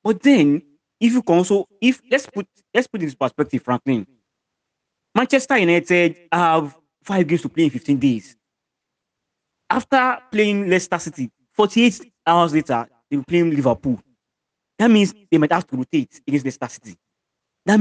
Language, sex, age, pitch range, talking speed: English, male, 30-49, 145-195 Hz, 160 wpm